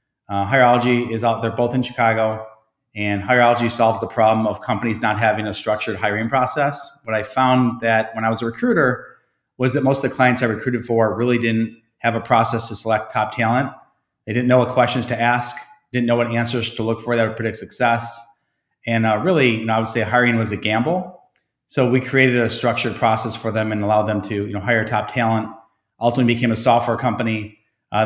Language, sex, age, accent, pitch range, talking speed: English, male, 30-49, American, 105-120 Hz, 205 wpm